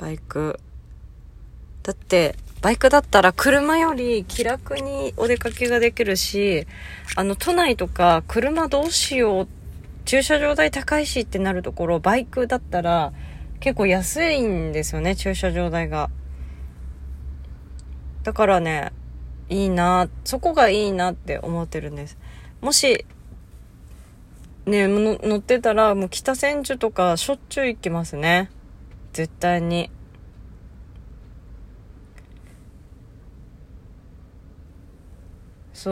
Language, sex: Japanese, female